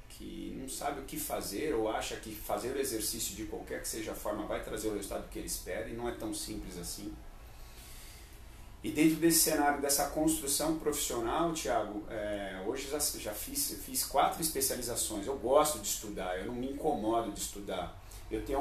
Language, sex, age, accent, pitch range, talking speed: Portuguese, male, 40-59, Brazilian, 110-160 Hz, 190 wpm